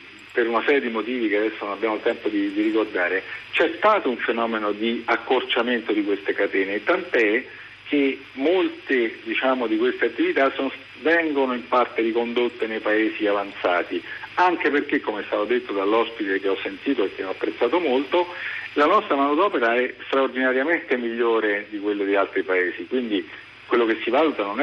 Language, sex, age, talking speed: Italian, male, 50-69, 170 wpm